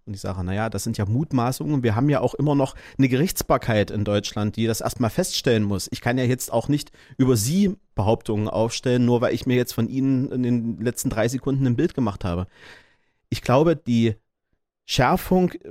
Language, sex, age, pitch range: German, male, 30-49, 110-135 Hz